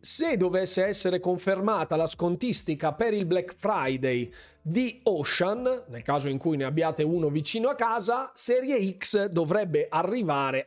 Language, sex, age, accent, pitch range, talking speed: Italian, male, 40-59, native, 145-200 Hz, 145 wpm